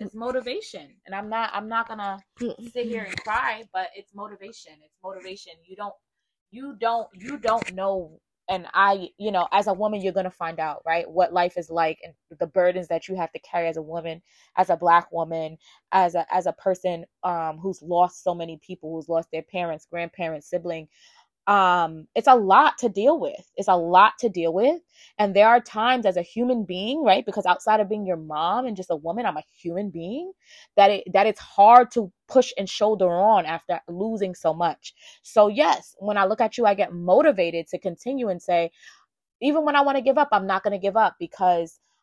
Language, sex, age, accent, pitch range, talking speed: English, female, 20-39, American, 170-215 Hz, 215 wpm